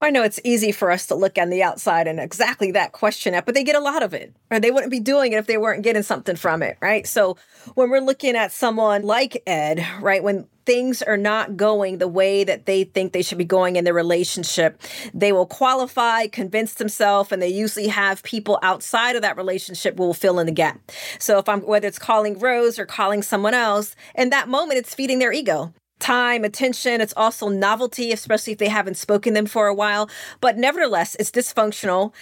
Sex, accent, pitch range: female, American, 185-235 Hz